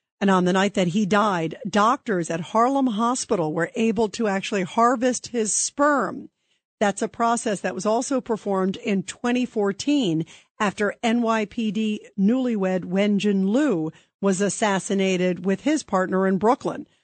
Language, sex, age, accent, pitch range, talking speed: English, female, 50-69, American, 175-215 Hz, 135 wpm